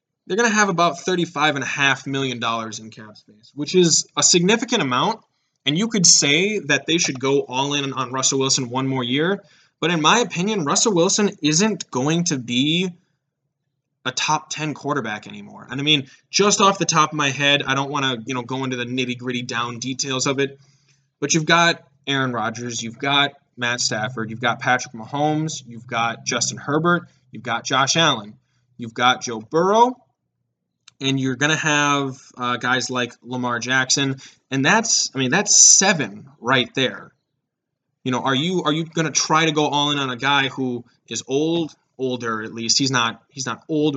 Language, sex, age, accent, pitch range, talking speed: English, male, 20-39, American, 125-155 Hz, 185 wpm